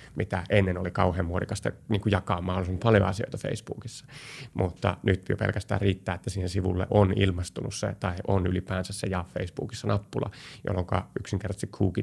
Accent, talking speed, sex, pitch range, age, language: native, 150 wpm, male, 95-110 Hz, 30-49, Finnish